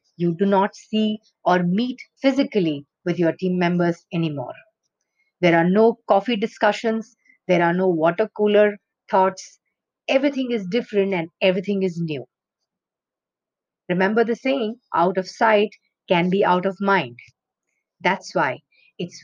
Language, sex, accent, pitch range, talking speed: English, female, Indian, 180-225 Hz, 135 wpm